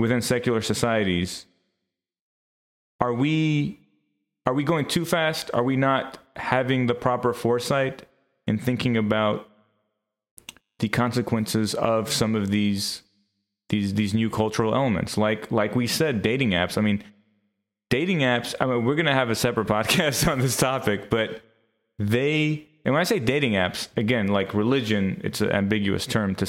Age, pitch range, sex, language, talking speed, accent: 30-49, 100-120 Hz, male, English, 155 wpm, American